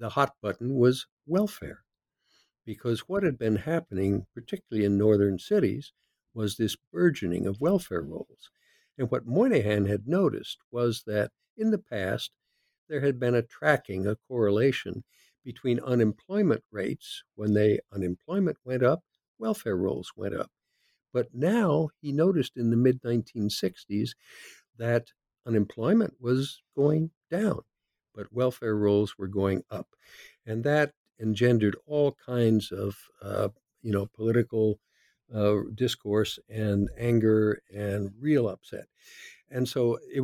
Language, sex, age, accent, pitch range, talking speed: English, male, 60-79, American, 105-145 Hz, 130 wpm